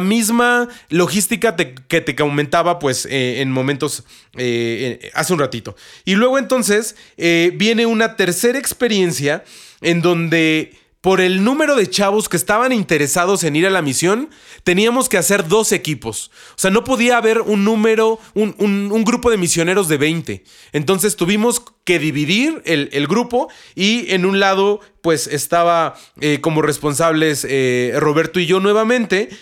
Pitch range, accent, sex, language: 155-215 Hz, Mexican, male, Spanish